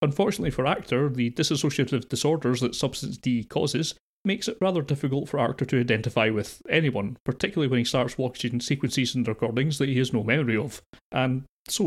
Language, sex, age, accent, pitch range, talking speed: English, male, 30-49, British, 115-140 Hz, 180 wpm